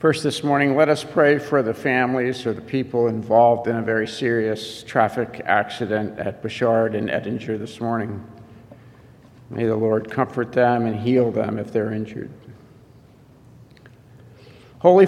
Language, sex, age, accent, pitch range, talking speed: English, male, 50-69, American, 115-130 Hz, 145 wpm